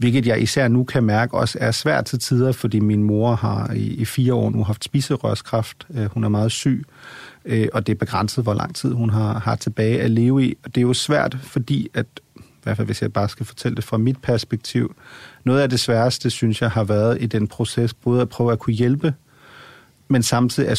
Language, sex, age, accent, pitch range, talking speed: Danish, male, 40-59, native, 110-125 Hz, 225 wpm